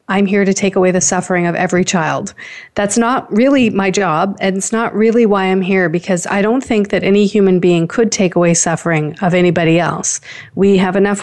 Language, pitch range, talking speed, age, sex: English, 180-215 Hz, 215 wpm, 40-59, female